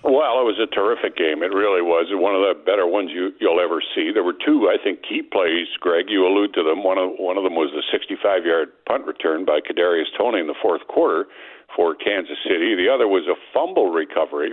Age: 60-79